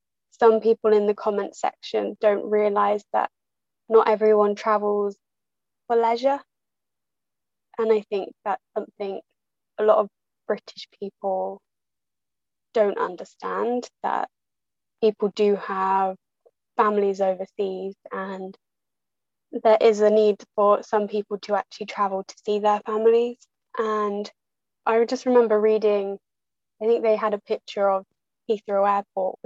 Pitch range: 195-215 Hz